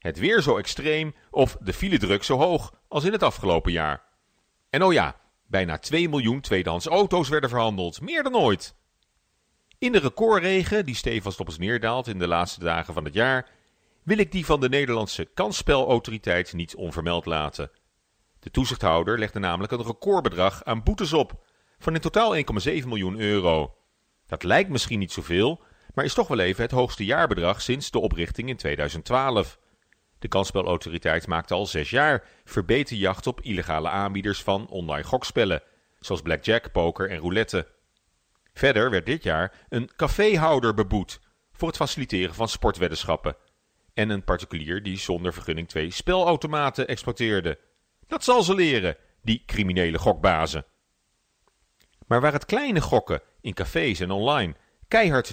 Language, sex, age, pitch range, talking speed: Dutch, male, 40-59, 90-135 Hz, 155 wpm